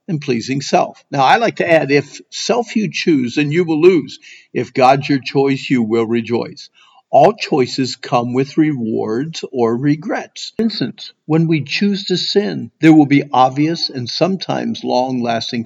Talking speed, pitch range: 170 wpm, 125-180 Hz